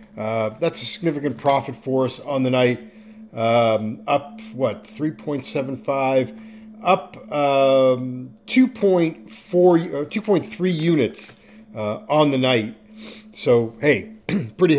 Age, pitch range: 40-59, 120-170 Hz